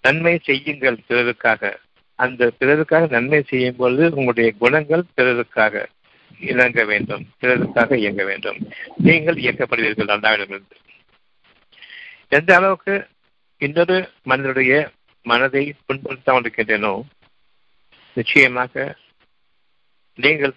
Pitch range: 115-145 Hz